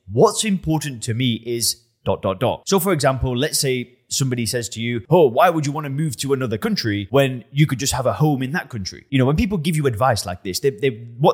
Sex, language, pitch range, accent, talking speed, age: male, English, 110-150 Hz, British, 250 wpm, 20-39